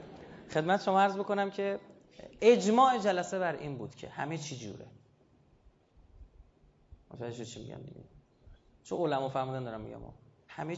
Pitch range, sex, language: 125-200 Hz, male, Persian